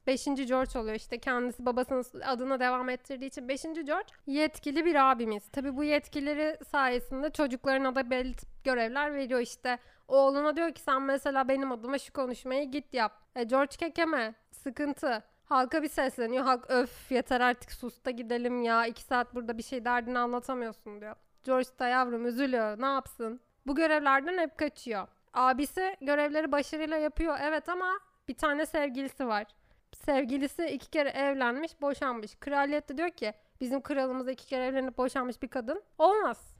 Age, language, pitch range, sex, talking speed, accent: 30-49, Turkish, 245-285 Hz, female, 155 wpm, native